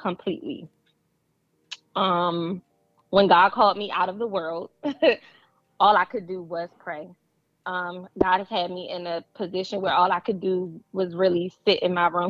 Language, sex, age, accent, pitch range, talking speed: English, female, 20-39, American, 180-215 Hz, 170 wpm